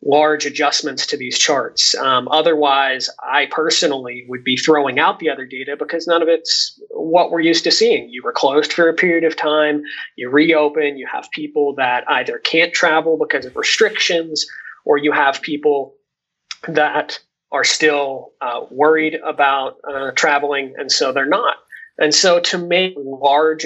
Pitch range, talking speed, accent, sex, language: 140-170 Hz, 165 wpm, American, male, English